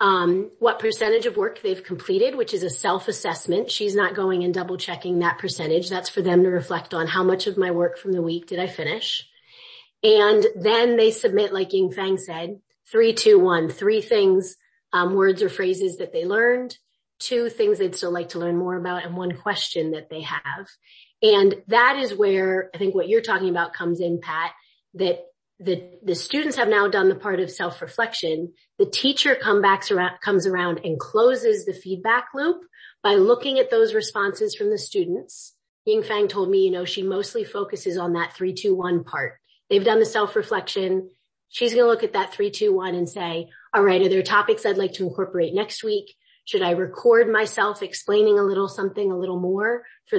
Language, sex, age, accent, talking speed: English, female, 30-49, American, 200 wpm